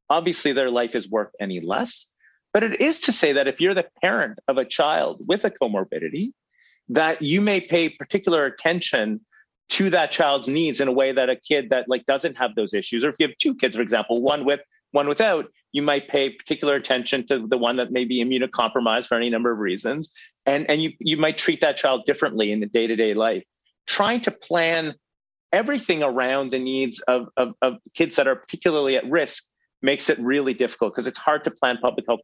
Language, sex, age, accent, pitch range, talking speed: English, male, 40-59, American, 115-155 Hz, 210 wpm